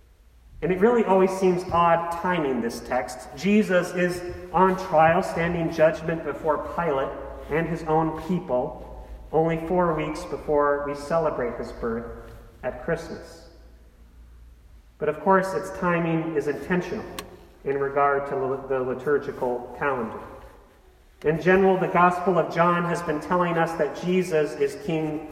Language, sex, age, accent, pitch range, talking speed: English, male, 40-59, American, 120-165 Hz, 135 wpm